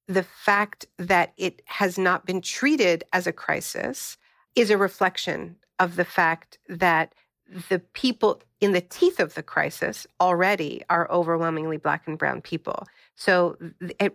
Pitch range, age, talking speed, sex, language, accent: 175-210 Hz, 50-69, 150 wpm, female, English, American